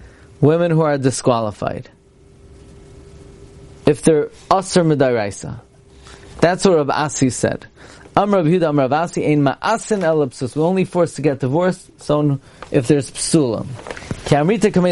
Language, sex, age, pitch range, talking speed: English, male, 30-49, 130-160 Hz, 115 wpm